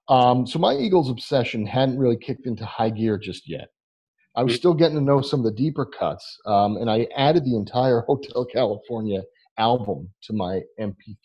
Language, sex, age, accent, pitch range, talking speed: English, male, 40-59, American, 95-120 Hz, 190 wpm